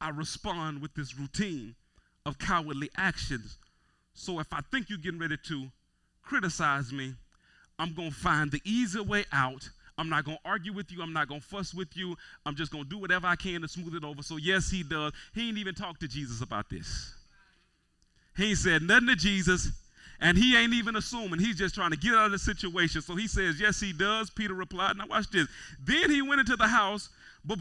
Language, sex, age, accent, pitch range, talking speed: English, male, 30-49, American, 130-205 Hz, 215 wpm